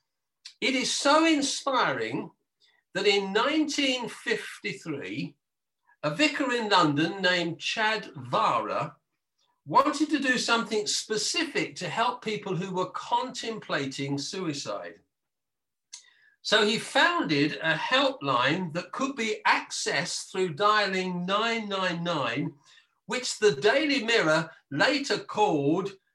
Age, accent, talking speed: 50-69, British, 100 wpm